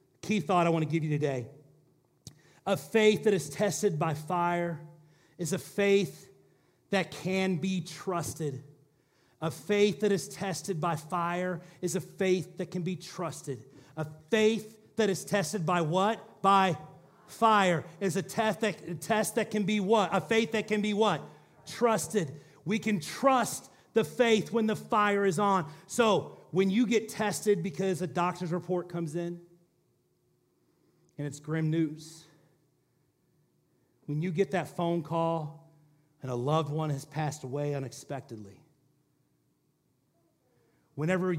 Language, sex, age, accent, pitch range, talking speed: English, male, 40-59, American, 155-195 Hz, 145 wpm